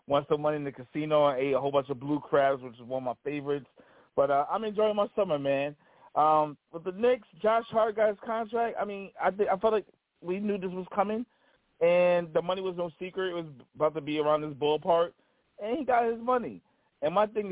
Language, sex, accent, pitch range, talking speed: English, male, American, 145-185 Hz, 240 wpm